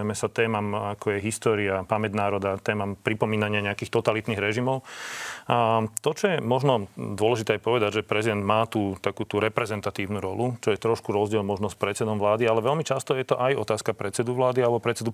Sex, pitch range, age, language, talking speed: male, 105-115 Hz, 40-59, Slovak, 180 wpm